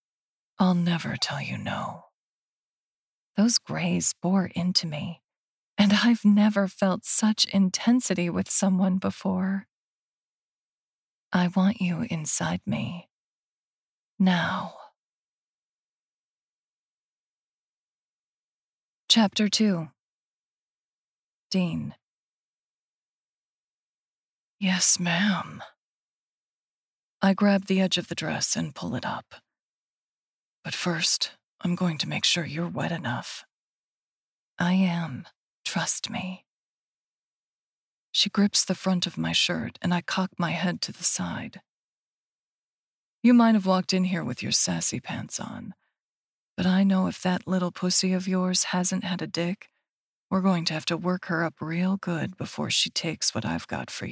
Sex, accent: female, American